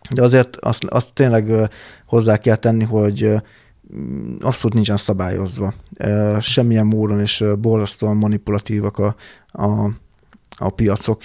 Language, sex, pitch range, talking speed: Hungarian, male, 105-115 Hz, 110 wpm